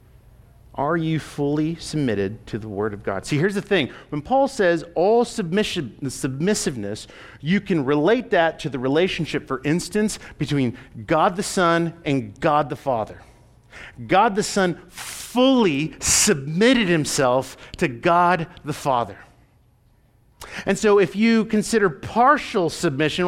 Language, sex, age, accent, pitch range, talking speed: English, male, 50-69, American, 130-215 Hz, 140 wpm